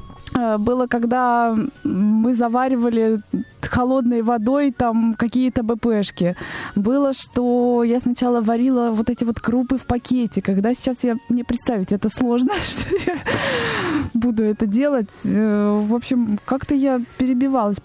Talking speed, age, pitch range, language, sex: 125 wpm, 20-39, 225-265 Hz, Russian, female